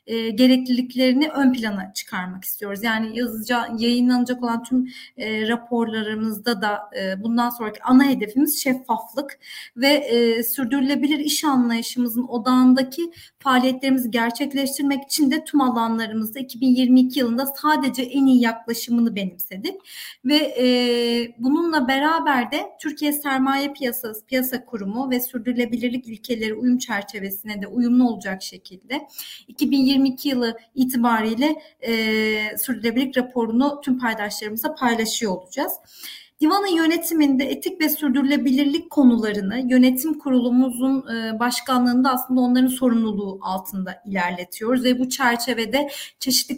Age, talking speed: 40-59, 110 wpm